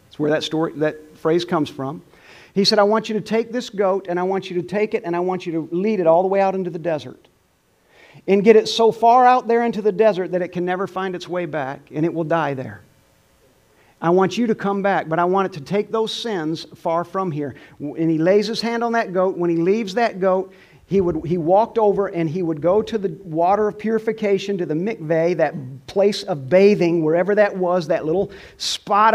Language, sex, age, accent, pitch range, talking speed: English, male, 40-59, American, 175-225 Hz, 240 wpm